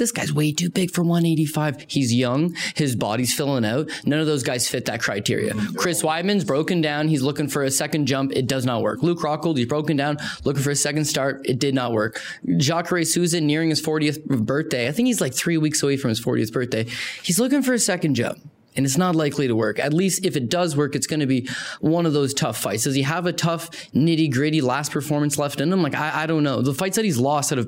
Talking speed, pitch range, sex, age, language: 250 wpm, 130-165 Hz, male, 20-39, English